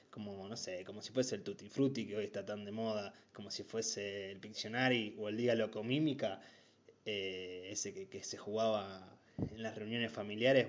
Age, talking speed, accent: 20-39, 185 wpm, Argentinian